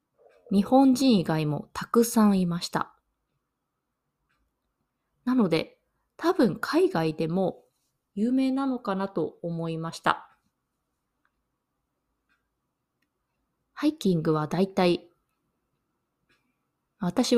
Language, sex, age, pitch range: Japanese, female, 20-39, 165-230 Hz